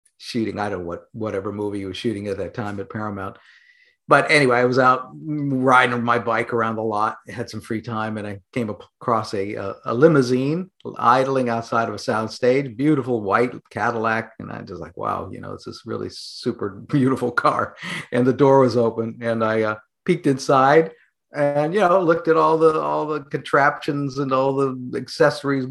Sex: male